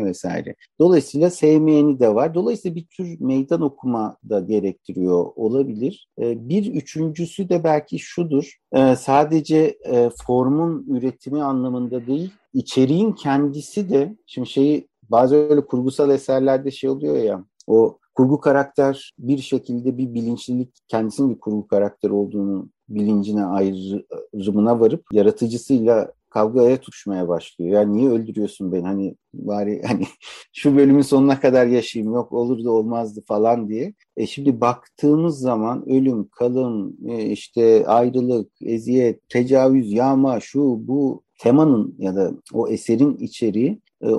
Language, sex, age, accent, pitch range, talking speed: Turkish, male, 50-69, native, 110-140 Hz, 125 wpm